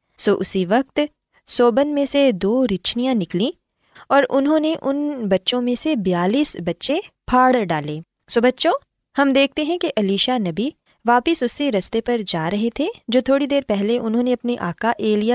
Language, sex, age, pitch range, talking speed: Urdu, female, 20-39, 190-260 Hz, 180 wpm